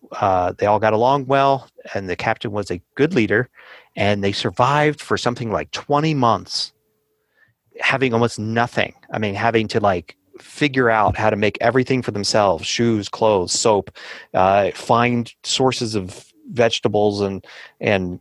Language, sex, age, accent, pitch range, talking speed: English, male, 30-49, American, 105-130 Hz, 155 wpm